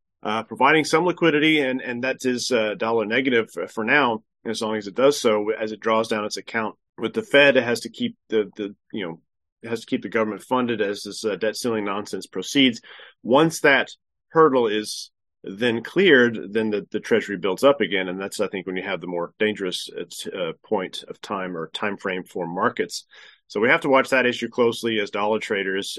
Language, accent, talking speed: English, American, 215 wpm